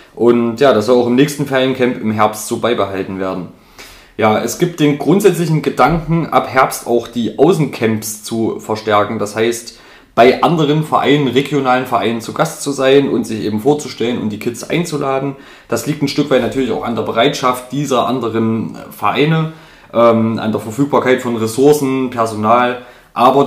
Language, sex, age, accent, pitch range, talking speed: German, male, 20-39, German, 115-140 Hz, 170 wpm